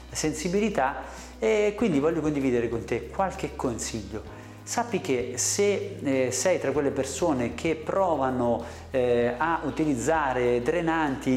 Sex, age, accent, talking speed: male, 40-59, native, 110 wpm